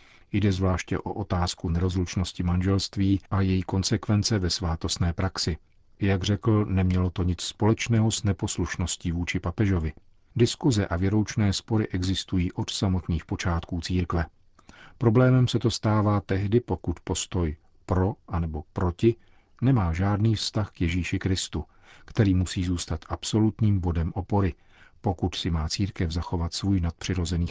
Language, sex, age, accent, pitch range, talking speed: Czech, male, 50-69, native, 90-100 Hz, 135 wpm